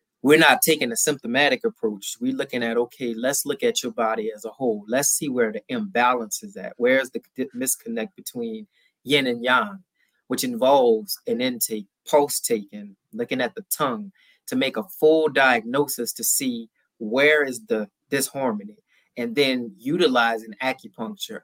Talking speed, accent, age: 160 wpm, American, 20-39